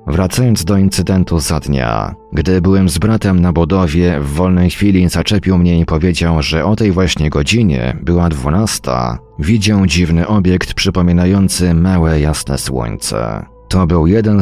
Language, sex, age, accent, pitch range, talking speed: Polish, male, 40-59, native, 80-95 Hz, 145 wpm